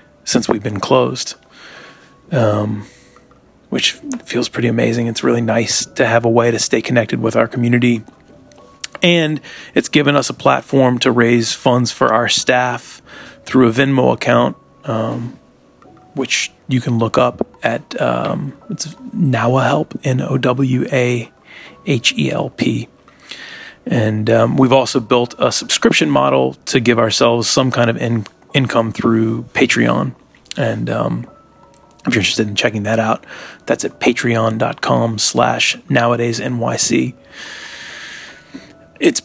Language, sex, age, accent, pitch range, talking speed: English, male, 30-49, American, 115-135 Hz, 130 wpm